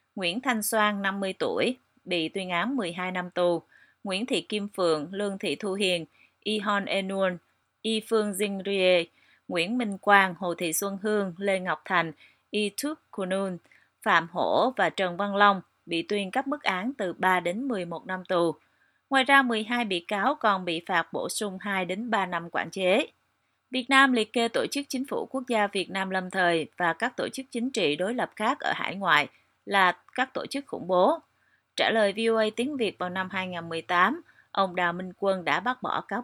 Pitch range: 175-230 Hz